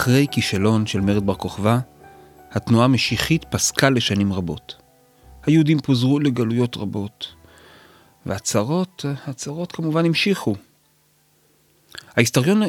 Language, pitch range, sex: Hebrew, 120-185 Hz, male